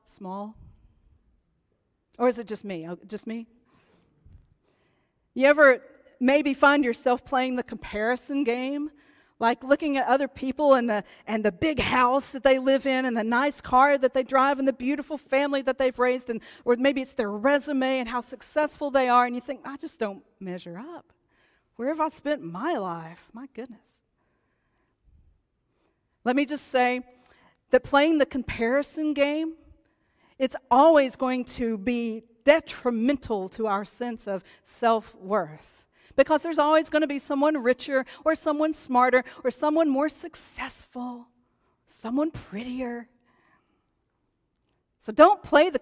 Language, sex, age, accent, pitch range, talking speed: English, female, 40-59, American, 230-285 Hz, 150 wpm